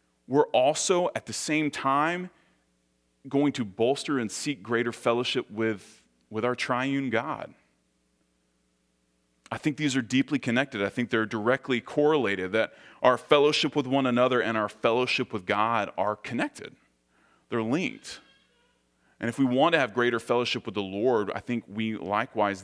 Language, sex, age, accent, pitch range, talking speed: English, male, 30-49, American, 90-125 Hz, 155 wpm